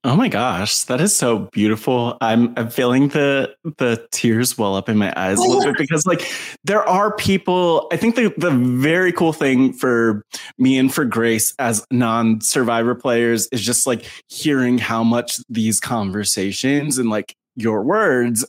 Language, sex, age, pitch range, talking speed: English, male, 20-39, 115-145 Hz, 170 wpm